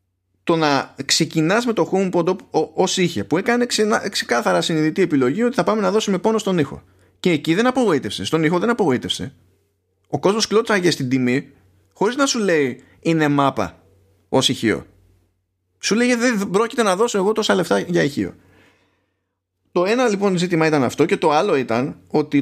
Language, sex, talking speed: Greek, male, 175 wpm